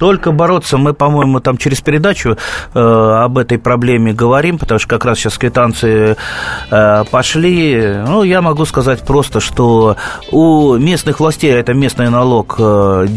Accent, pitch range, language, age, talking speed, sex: native, 110-140 Hz, Russian, 30-49, 155 wpm, male